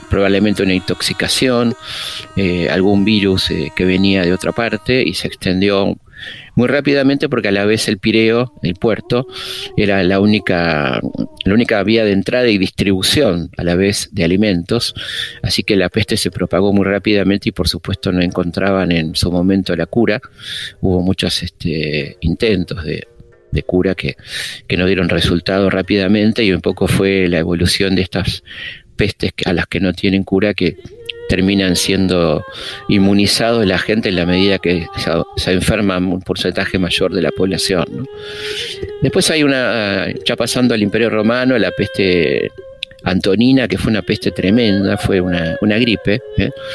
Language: Spanish